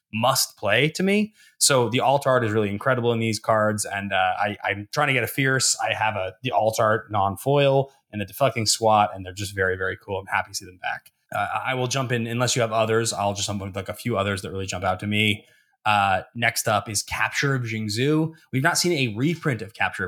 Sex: male